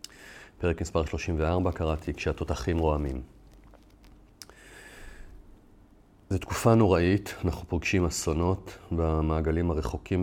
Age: 40-59